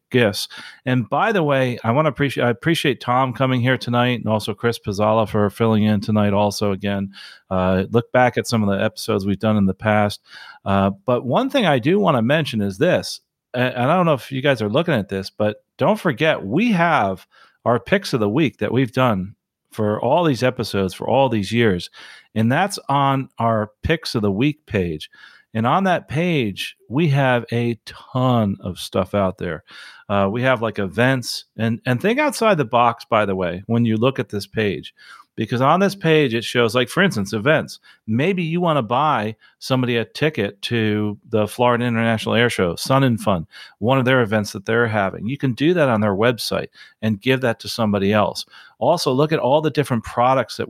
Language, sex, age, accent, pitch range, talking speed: English, male, 40-59, American, 105-140 Hz, 210 wpm